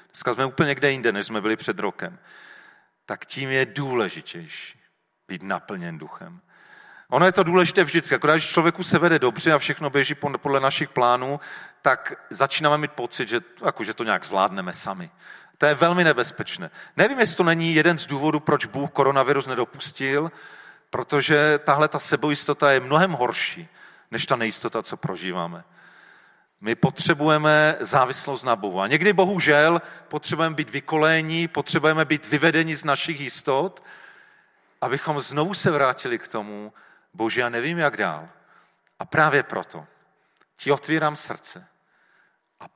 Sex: male